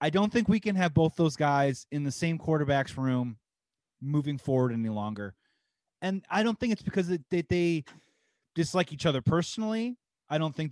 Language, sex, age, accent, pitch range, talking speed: English, male, 30-49, American, 135-170 Hz, 190 wpm